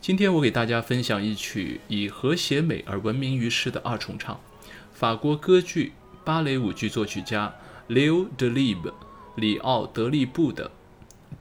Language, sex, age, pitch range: Chinese, male, 20-39, 105-145 Hz